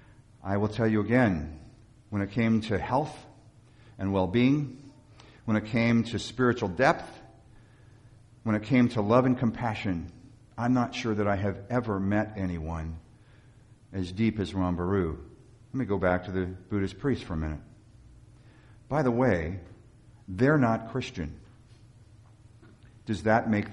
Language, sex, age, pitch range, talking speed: English, male, 50-69, 110-130 Hz, 150 wpm